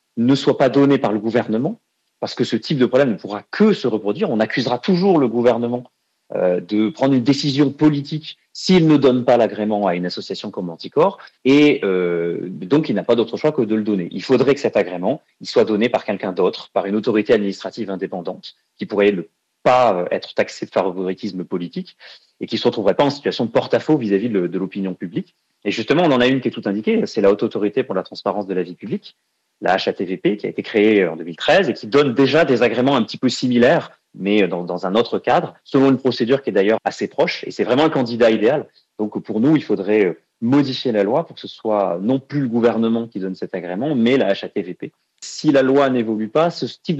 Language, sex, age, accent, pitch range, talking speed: French, male, 30-49, French, 105-135 Hz, 230 wpm